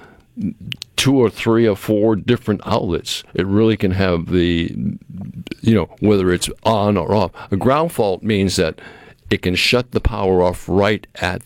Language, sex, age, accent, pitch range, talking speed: English, male, 50-69, American, 85-105 Hz, 170 wpm